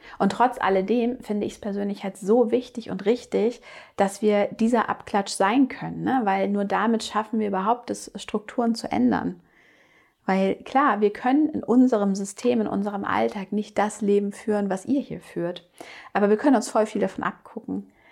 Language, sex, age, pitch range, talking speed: German, female, 30-49, 190-230 Hz, 180 wpm